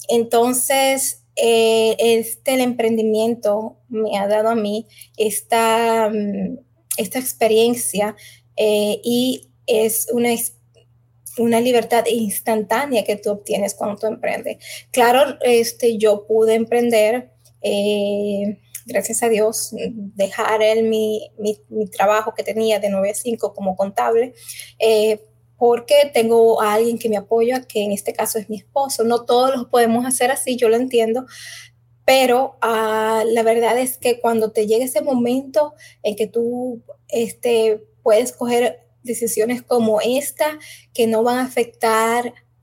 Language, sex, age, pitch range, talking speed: Spanish, female, 20-39, 210-240 Hz, 140 wpm